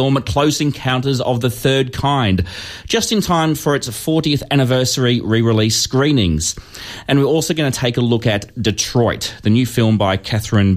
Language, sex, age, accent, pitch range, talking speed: English, male, 30-49, Australian, 110-145 Hz, 165 wpm